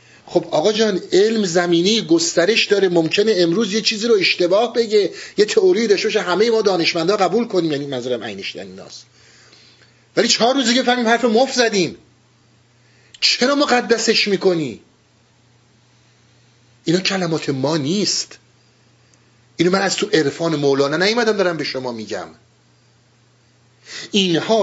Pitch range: 160-230 Hz